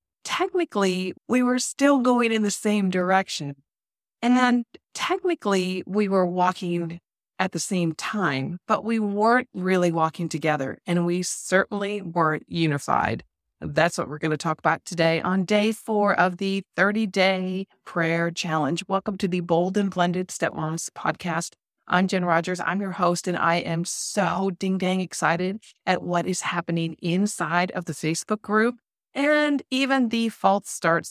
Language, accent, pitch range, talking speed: English, American, 170-205 Hz, 155 wpm